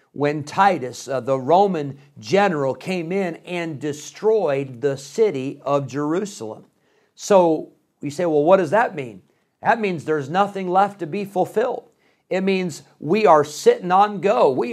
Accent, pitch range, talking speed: American, 140-185 Hz, 155 wpm